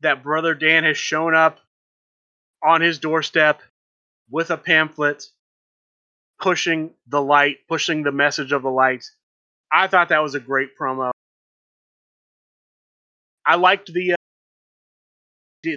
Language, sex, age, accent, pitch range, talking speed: English, male, 30-49, American, 135-160 Hz, 125 wpm